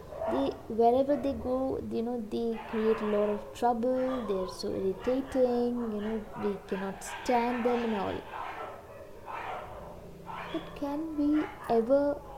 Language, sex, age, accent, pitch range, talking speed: English, female, 20-39, Indian, 205-255 Hz, 130 wpm